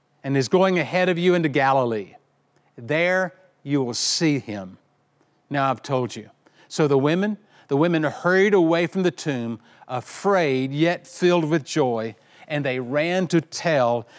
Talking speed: 155 wpm